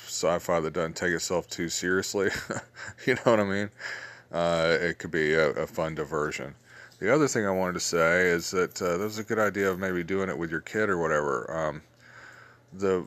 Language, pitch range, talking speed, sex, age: English, 80-95 Hz, 205 wpm, male, 30-49